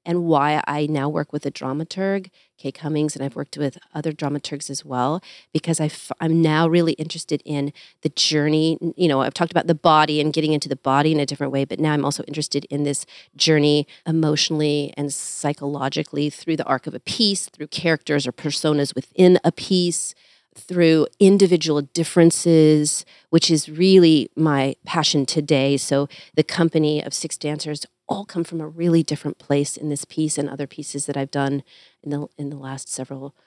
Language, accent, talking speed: English, American, 185 wpm